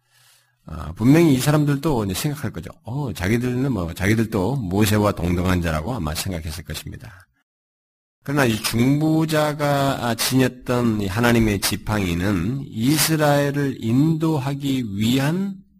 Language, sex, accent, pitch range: Korean, male, native, 105-155 Hz